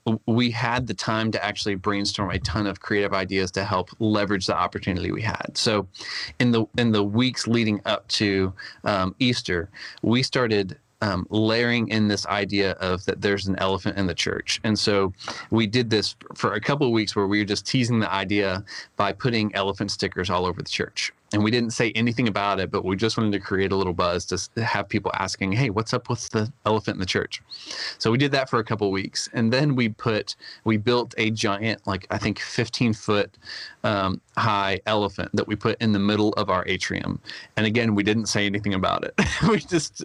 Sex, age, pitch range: male, 30-49, 100-115 Hz